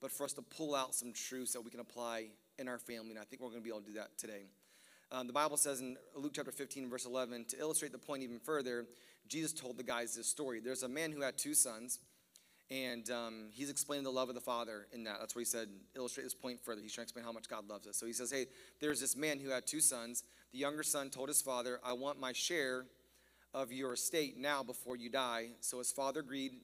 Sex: male